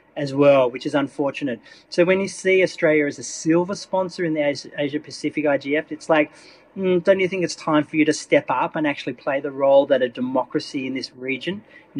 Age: 30-49